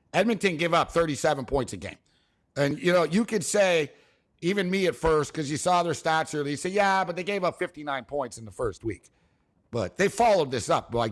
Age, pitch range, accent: 60-79, 125-170 Hz, American